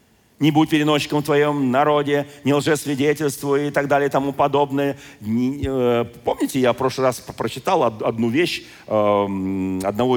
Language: Russian